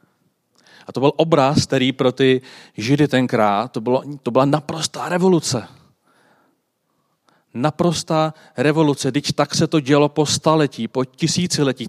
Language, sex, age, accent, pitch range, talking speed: Czech, male, 40-59, native, 120-145 Hz, 130 wpm